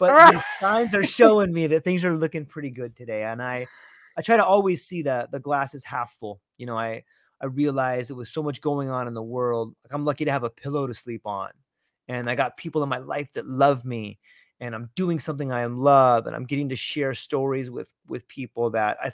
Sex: male